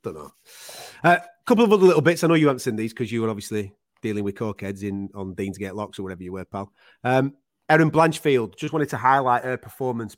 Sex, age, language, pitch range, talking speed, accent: male, 30-49, English, 110-135 Hz, 240 wpm, British